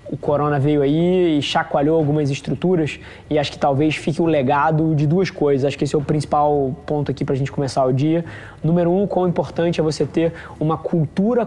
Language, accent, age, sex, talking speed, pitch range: Portuguese, Brazilian, 20-39, male, 215 wpm, 150-170 Hz